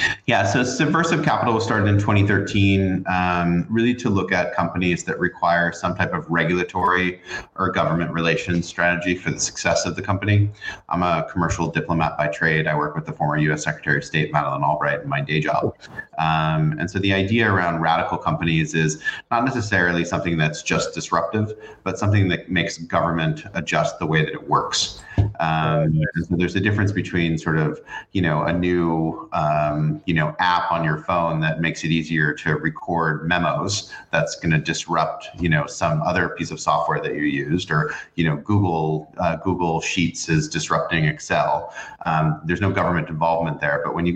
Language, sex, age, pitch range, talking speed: English, male, 30-49, 80-95 Hz, 185 wpm